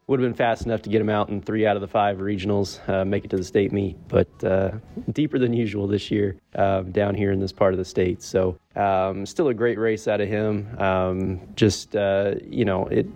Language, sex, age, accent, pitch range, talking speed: English, male, 20-39, American, 95-110 Hz, 245 wpm